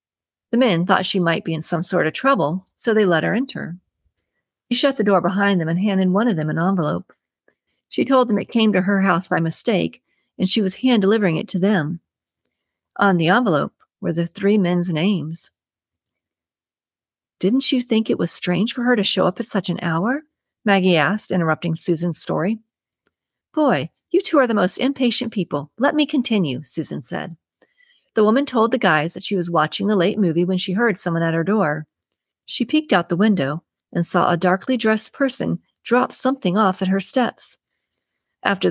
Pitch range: 175-225 Hz